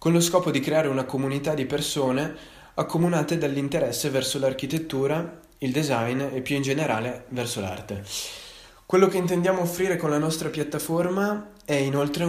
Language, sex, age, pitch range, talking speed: Italian, male, 20-39, 120-150 Hz, 150 wpm